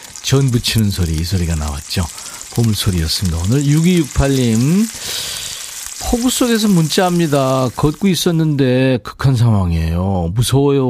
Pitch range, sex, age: 100-155 Hz, male, 40-59